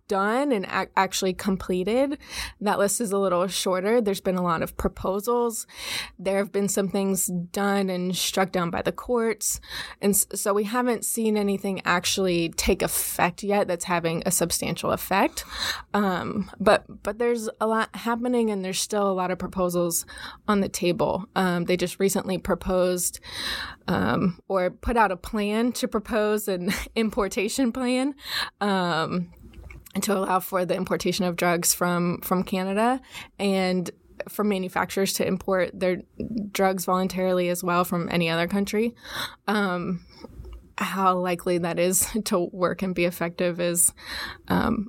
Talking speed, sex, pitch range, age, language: 150 wpm, female, 180-210 Hz, 20-39, English